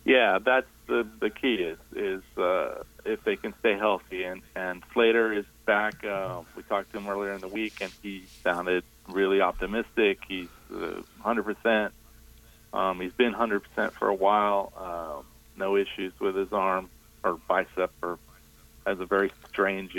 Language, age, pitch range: English, 40-59, 95-115 Hz